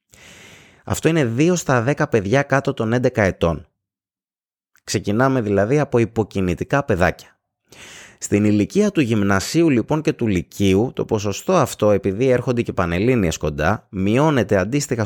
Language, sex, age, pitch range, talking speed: Greek, male, 20-39, 100-135 Hz, 135 wpm